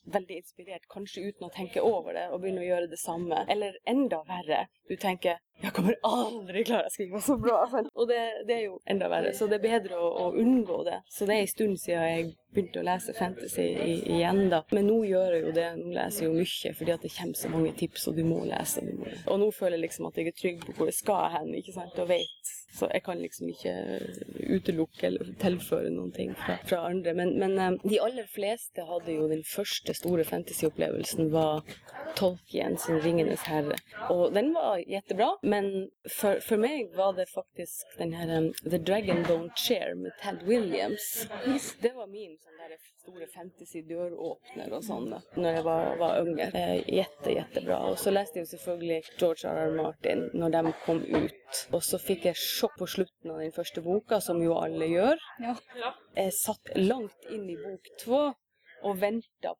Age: 20-39